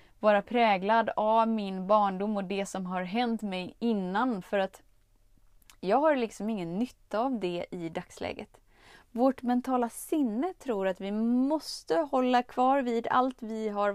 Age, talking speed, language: 20-39, 155 wpm, Swedish